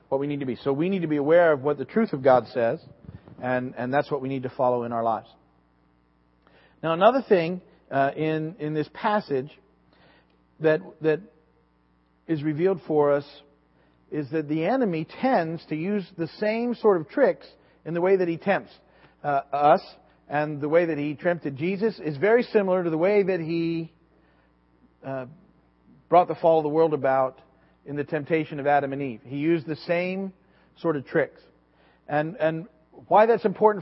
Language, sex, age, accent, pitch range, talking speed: English, male, 40-59, American, 140-185 Hz, 185 wpm